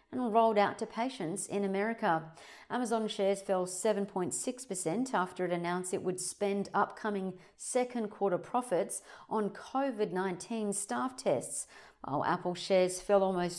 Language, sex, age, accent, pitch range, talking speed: English, female, 40-59, Australian, 185-225 Hz, 135 wpm